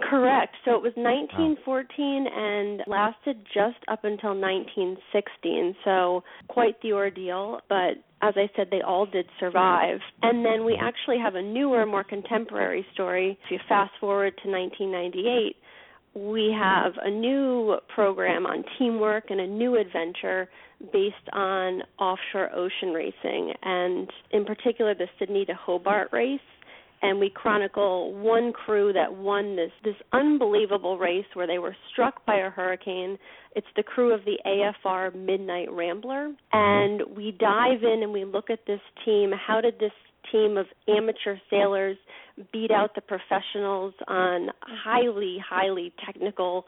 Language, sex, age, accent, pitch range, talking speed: English, female, 30-49, American, 190-225 Hz, 145 wpm